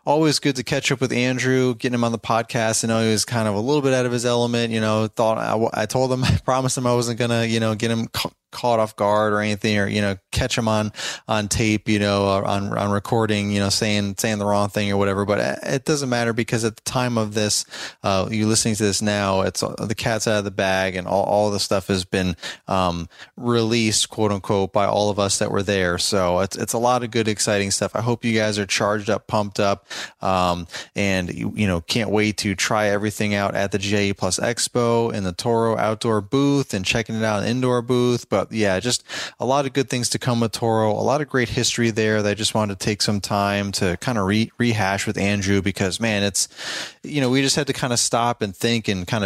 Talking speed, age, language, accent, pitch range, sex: 255 wpm, 20-39, English, American, 100-115 Hz, male